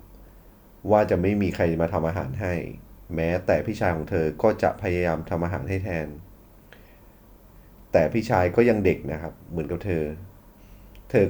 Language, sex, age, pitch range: Thai, male, 30-49, 85-100 Hz